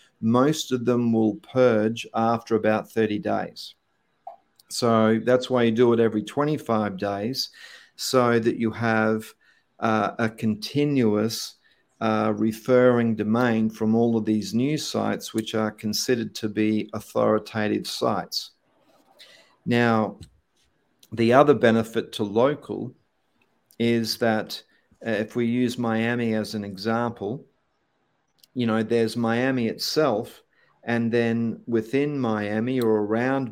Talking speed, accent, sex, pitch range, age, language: 120 wpm, Australian, male, 110-125 Hz, 50-69, English